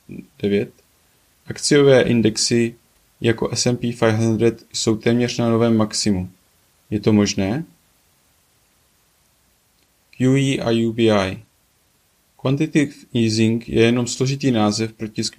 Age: 20-39